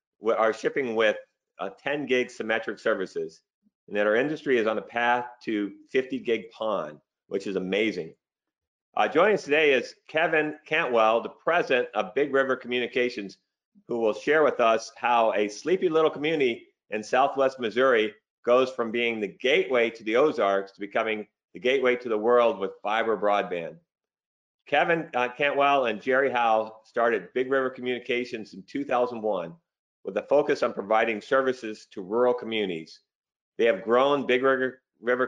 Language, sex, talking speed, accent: English, male, 160 wpm, American